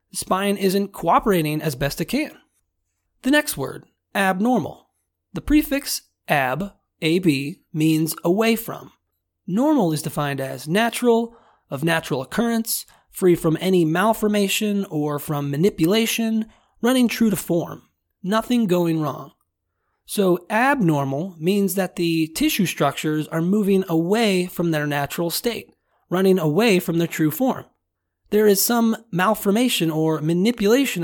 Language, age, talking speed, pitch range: English, 30-49, 125 wpm, 155-215 Hz